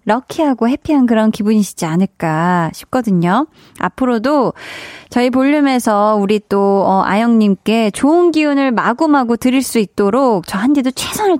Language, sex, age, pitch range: Korean, female, 20-39, 200-270 Hz